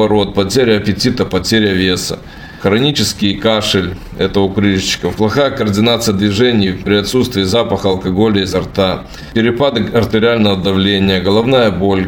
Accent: native